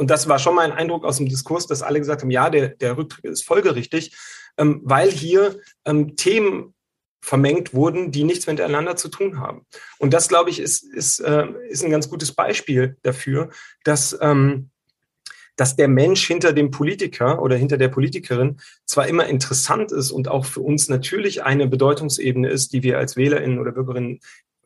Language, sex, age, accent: German, male, 40-59, German